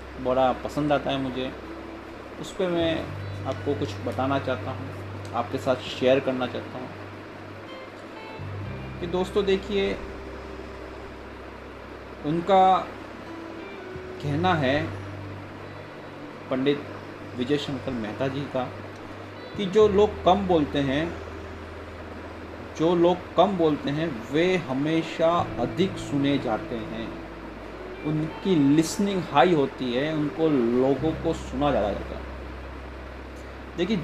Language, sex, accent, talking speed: Hindi, male, native, 110 wpm